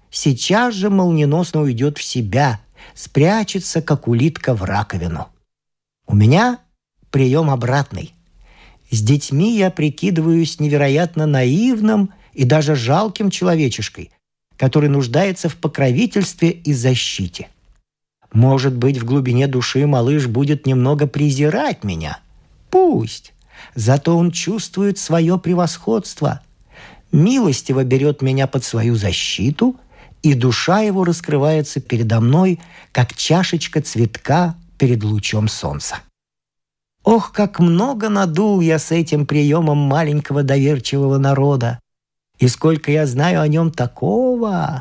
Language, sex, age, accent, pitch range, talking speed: Russian, male, 50-69, native, 130-170 Hz, 110 wpm